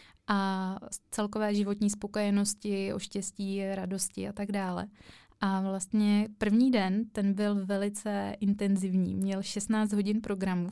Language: Czech